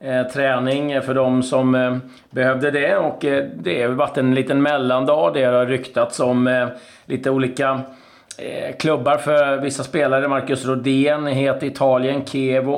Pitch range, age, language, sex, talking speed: 120-135 Hz, 30-49, Swedish, male, 130 wpm